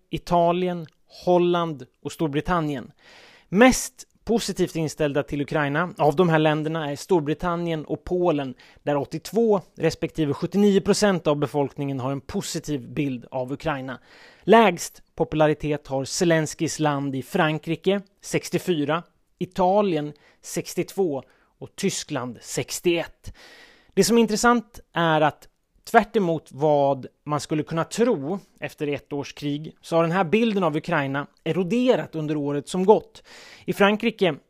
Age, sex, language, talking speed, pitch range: 30-49, male, Swedish, 125 wpm, 150-195 Hz